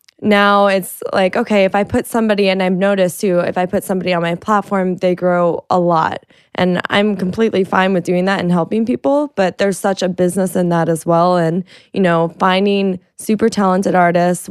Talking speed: 205 wpm